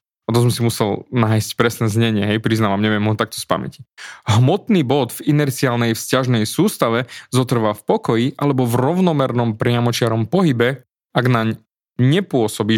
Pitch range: 115-145 Hz